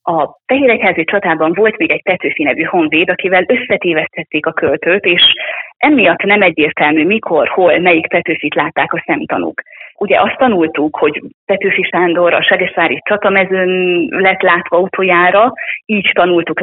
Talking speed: 135 wpm